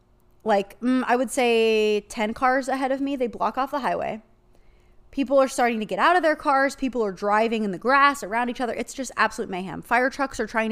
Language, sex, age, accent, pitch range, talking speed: English, female, 20-39, American, 195-260 Hz, 230 wpm